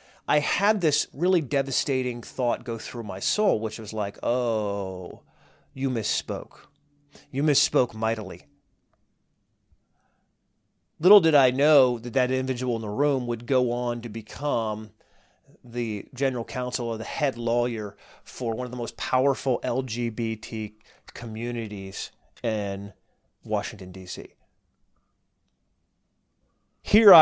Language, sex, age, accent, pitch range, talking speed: English, male, 30-49, American, 110-140 Hz, 115 wpm